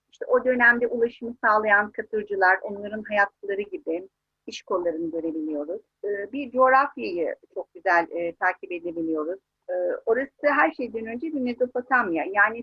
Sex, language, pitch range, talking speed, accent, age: female, Turkish, 195-260 Hz, 125 wpm, native, 50-69